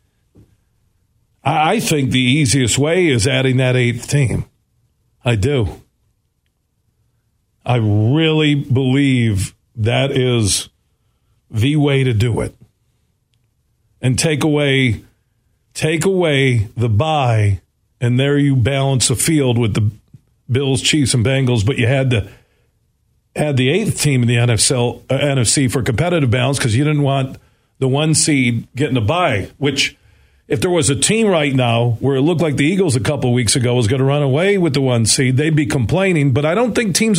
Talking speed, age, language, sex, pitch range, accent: 165 wpm, 50-69, English, male, 115-145 Hz, American